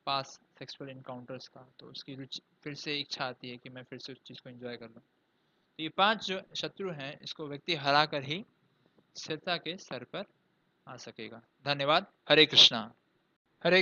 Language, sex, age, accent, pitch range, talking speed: English, male, 20-39, Indian, 150-190 Hz, 180 wpm